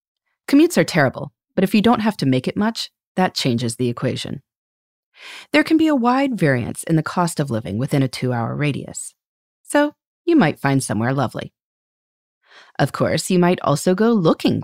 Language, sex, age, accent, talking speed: English, female, 30-49, American, 180 wpm